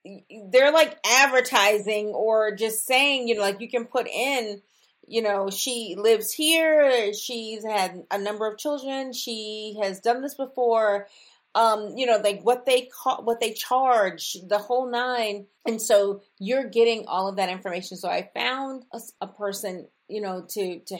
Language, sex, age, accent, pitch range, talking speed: English, female, 40-59, American, 195-235 Hz, 170 wpm